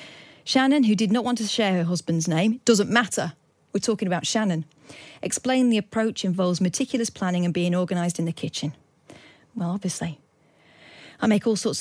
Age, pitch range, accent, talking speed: 40-59, 165-210 Hz, British, 175 wpm